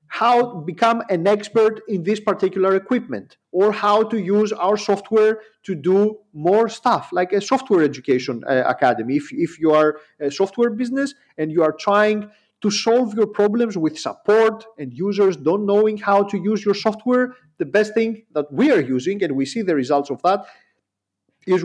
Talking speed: 185 wpm